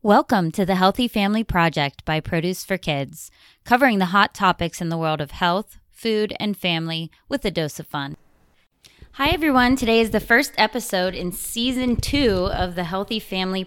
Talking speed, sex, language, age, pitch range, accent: 180 wpm, female, English, 20-39, 170-210 Hz, American